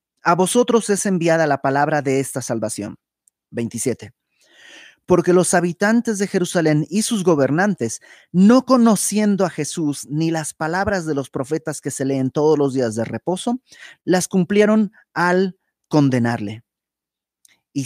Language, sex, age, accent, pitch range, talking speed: Spanish, male, 30-49, Mexican, 135-190 Hz, 140 wpm